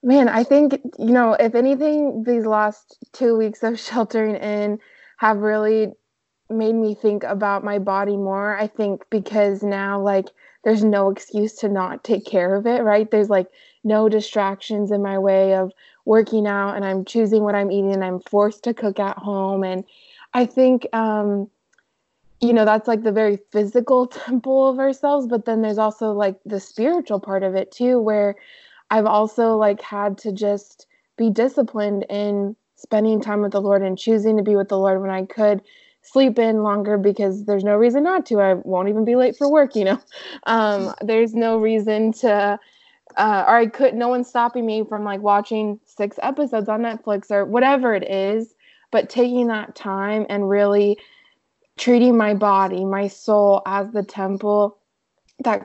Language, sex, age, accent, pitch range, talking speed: English, female, 20-39, American, 200-235 Hz, 180 wpm